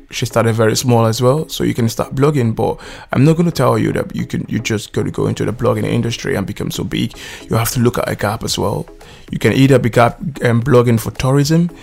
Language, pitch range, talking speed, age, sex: English, 110-130 Hz, 260 wpm, 20-39, male